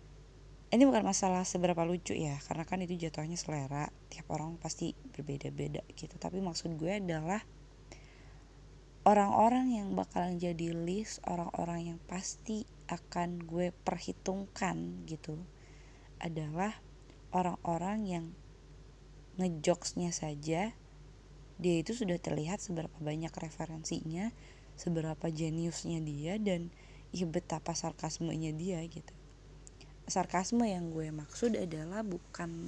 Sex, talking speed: female, 110 wpm